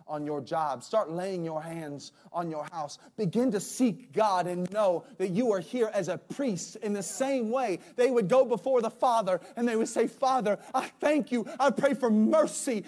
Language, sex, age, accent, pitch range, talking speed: English, male, 30-49, American, 175-260 Hz, 210 wpm